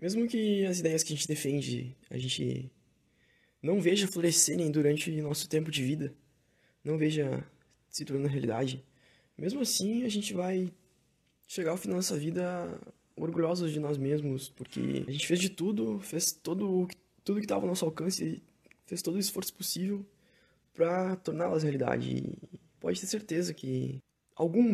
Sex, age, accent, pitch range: male, 10-29, Brazilian, 140-175 Hz